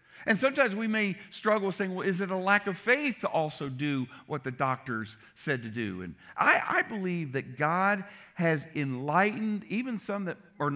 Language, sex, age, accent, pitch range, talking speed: English, male, 50-69, American, 130-190 Hz, 190 wpm